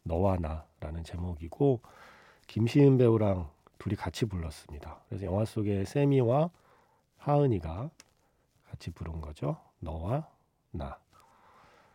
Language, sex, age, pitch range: Korean, male, 40-59, 90-125 Hz